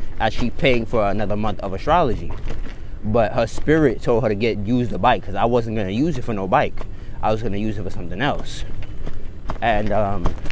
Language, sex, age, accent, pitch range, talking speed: English, male, 20-39, American, 100-130 Hz, 210 wpm